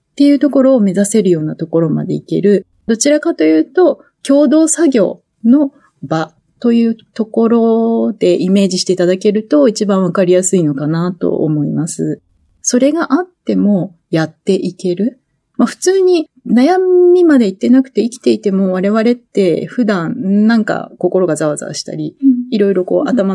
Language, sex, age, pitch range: Japanese, female, 30-49, 180-265 Hz